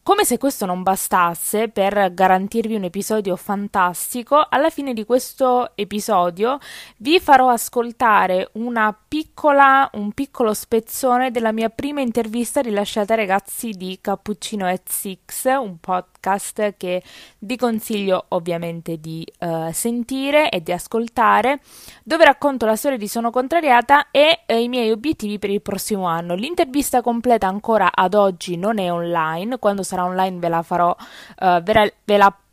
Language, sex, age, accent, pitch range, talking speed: Italian, female, 20-39, native, 190-250 Hz, 140 wpm